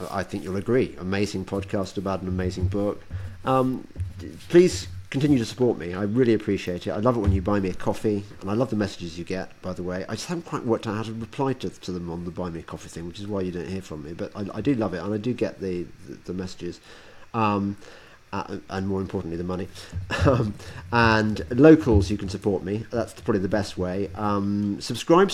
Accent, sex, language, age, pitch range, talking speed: British, male, English, 40-59, 90-110 Hz, 235 wpm